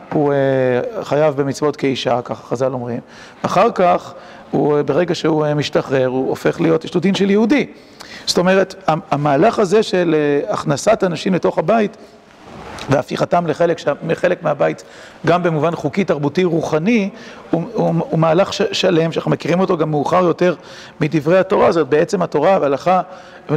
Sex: male